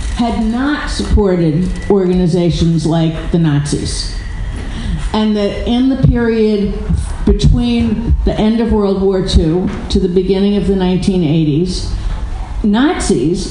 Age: 50-69